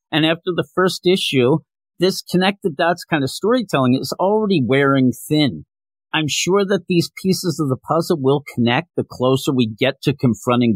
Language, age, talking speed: English, 50-69, 175 wpm